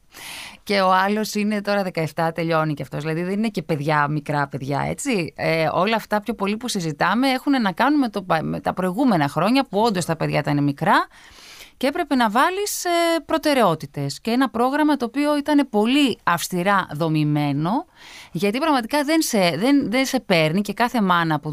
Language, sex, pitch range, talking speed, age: Greek, female, 160-255 Hz, 170 wpm, 20-39